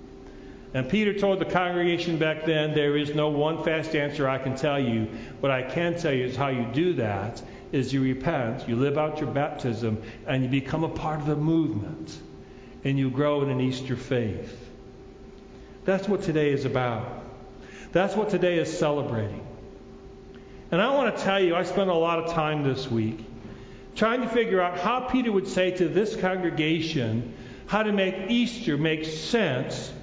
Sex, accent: male, American